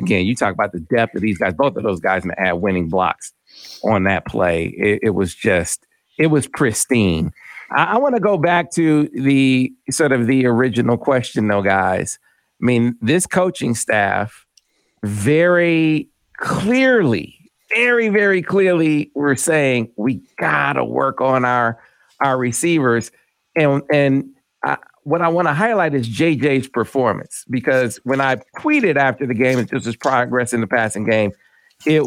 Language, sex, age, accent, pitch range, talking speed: English, male, 50-69, American, 130-180 Hz, 165 wpm